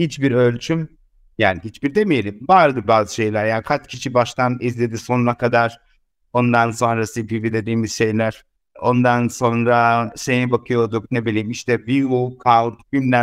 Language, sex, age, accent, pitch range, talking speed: Turkish, male, 60-79, native, 120-145 Hz, 135 wpm